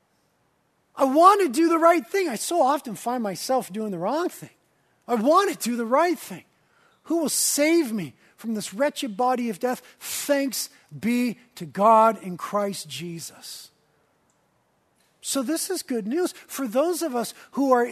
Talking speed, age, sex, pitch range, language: 170 wpm, 40-59, male, 215-280 Hz, English